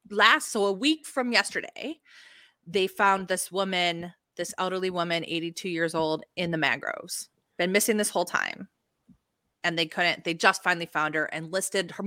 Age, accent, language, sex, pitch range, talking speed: 30-49, American, English, female, 170-230 Hz, 175 wpm